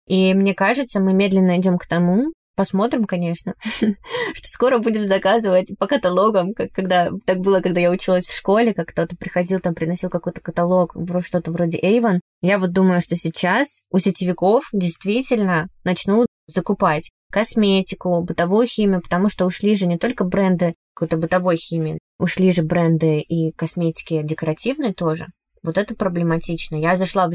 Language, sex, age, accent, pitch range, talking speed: Russian, female, 20-39, native, 175-210 Hz, 155 wpm